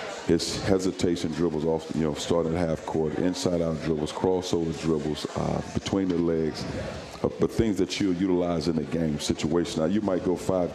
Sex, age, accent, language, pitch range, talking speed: male, 50-69, American, English, 80-90 Hz, 190 wpm